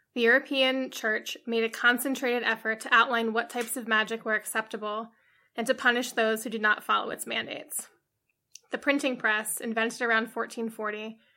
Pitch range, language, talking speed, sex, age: 220-250 Hz, English, 165 wpm, female, 20-39